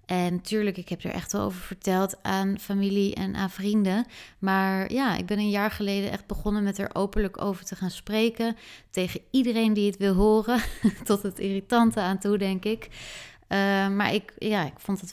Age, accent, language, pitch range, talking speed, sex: 20-39, Dutch, Dutch, 185-220 Hz, 195 wpm, female